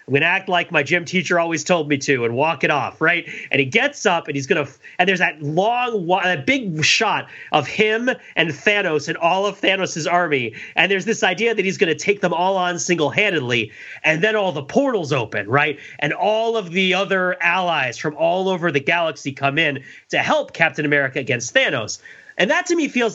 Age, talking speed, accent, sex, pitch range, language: 30-49, 220 wpm, American, male, 145-205 Hz, English